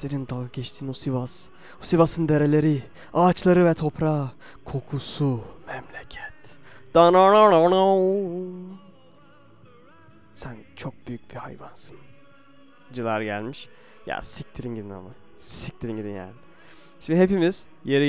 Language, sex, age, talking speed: Turkish, male, 20-39, 100 wpm